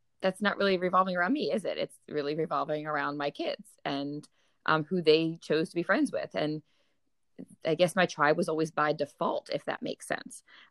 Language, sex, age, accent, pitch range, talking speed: English, female, 20-39, American, 145-175 Hz, 200 wpm